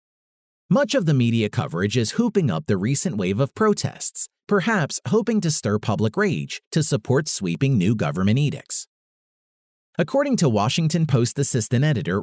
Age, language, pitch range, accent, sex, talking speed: 40-59, English, 125-185 Hz, American, male, 150 wpm